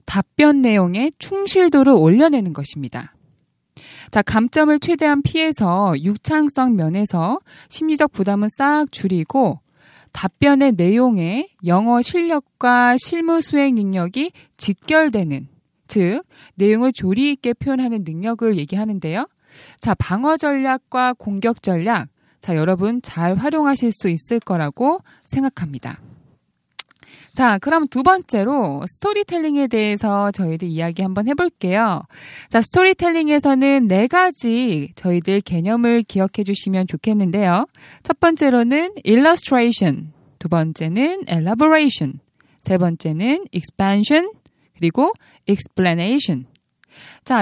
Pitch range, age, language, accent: 185-285 Hz, 20-39, Korean, native